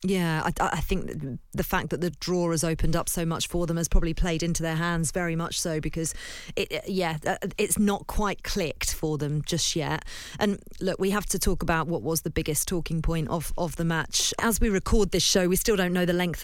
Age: 40-59